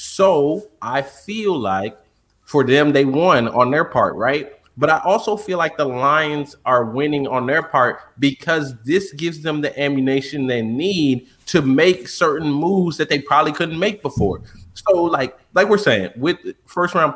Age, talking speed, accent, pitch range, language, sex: 20-39, 175 wpm, American, 130-175 Hz, English, male